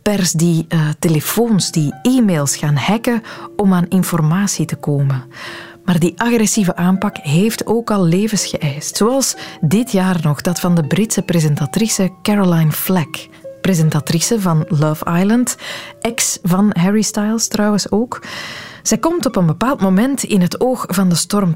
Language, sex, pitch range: Dutch, female, 160-210 Hz